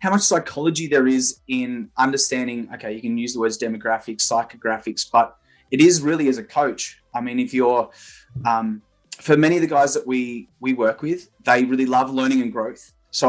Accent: Australian